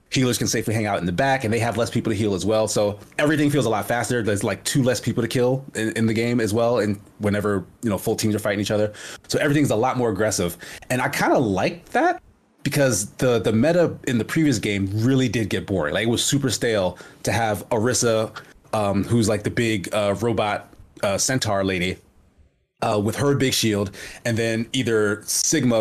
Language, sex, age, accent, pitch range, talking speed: English, male, 30-49, American, 105-130 Hz, 225 wpm